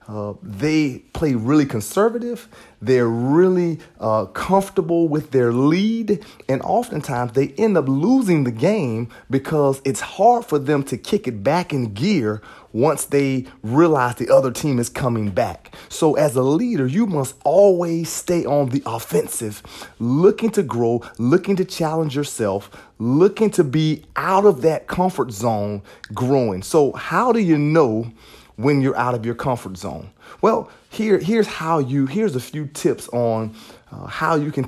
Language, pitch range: English, 120-170 Hz